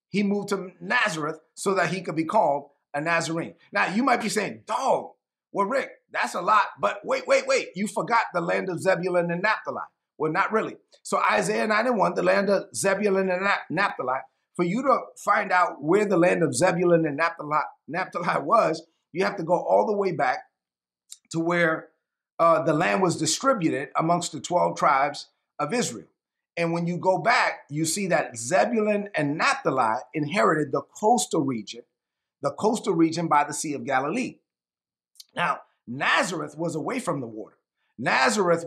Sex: male